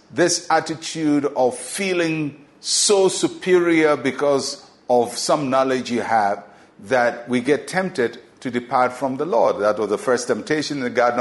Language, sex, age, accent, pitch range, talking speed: English, male, 50-69, Nigerian, 120-155 Hz, 155 wpm